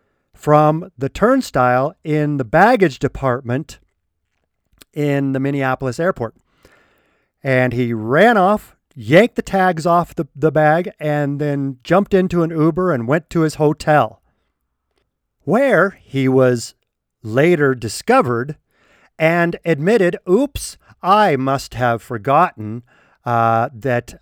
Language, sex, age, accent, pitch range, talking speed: English, male, 50-69, American, 120-175 Hz, 115 wpm